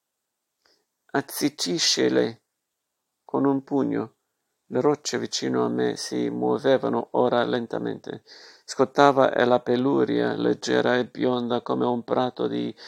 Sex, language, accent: male, Italian, native